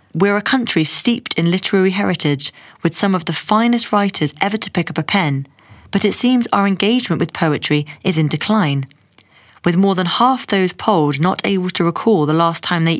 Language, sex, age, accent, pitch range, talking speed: English, female, 30-49, British, 155-210 Hz, 200 wpm